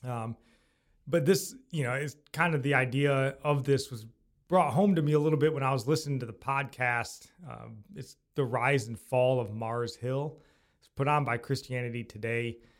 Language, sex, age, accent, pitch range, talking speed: English, male, 30-49, American, 115-140 Hz, 195 wpm